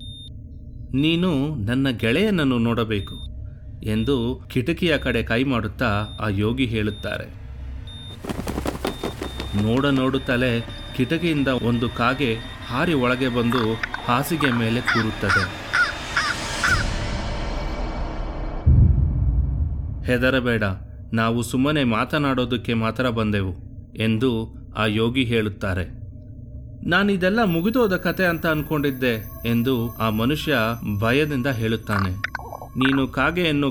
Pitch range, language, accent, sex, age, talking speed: 110-145 Hz, Kannada, native, male, 30-49, 80 wpm